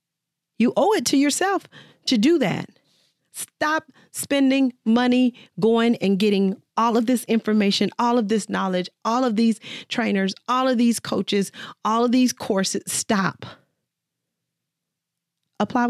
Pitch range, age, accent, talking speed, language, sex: 150-225 Hz, 40-59, American, 135 wpm, English, female